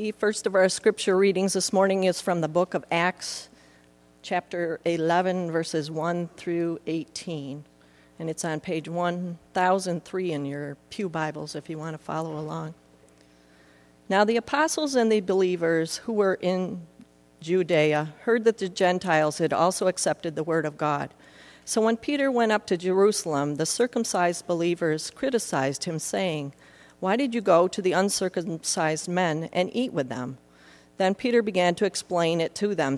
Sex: female